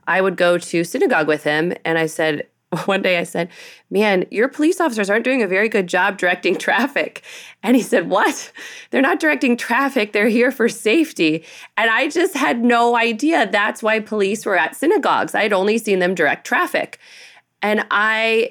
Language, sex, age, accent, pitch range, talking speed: English, female, 30-49, American, 165-220 Hz, 190 wpm